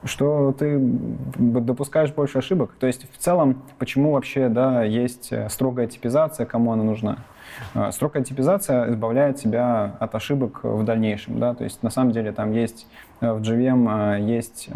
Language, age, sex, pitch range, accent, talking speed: Russian, 20-39, male, 115-130 Hz, native, 150 wpm